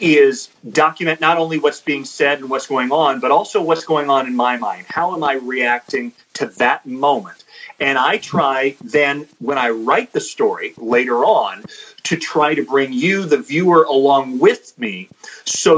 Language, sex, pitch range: English, male, 130-160 Hz